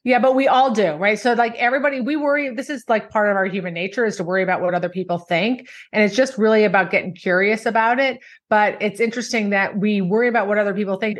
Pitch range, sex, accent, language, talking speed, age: 190-230 Hz, female, American, English, 250 wpm, 30-49